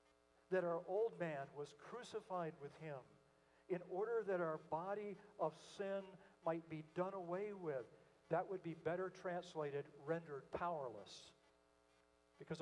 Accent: American